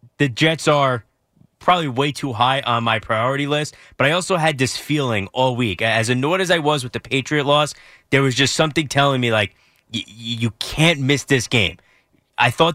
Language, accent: English, American